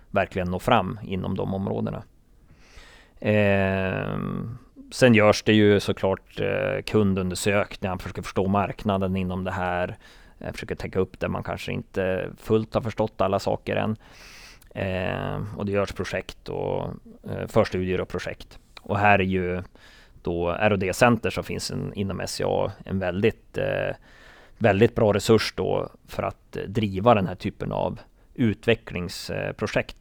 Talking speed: 130 wpm